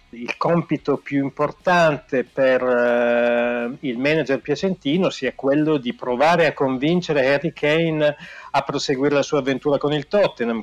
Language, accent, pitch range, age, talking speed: Italian, native, 130-155 Hz, 40-59, 140 wpm